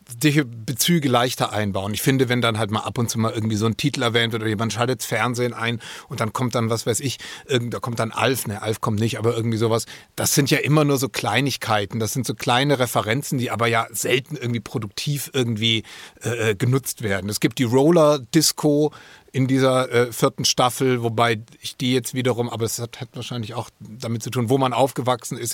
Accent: German